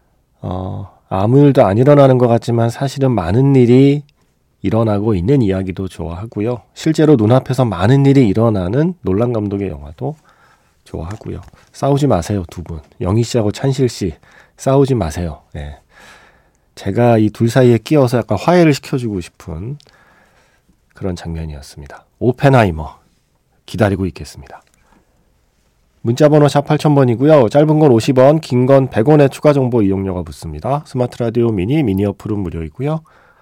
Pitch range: 90-135 Hz